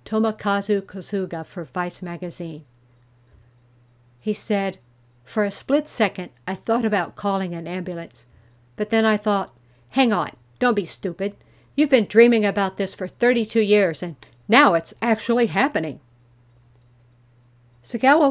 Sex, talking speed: female, 130 wpm